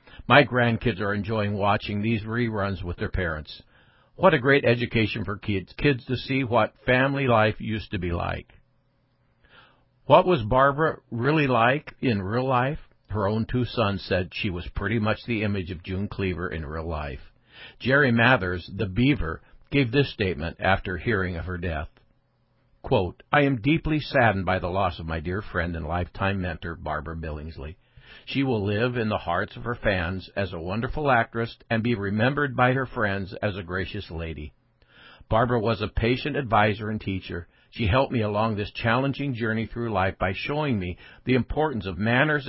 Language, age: English, 60-79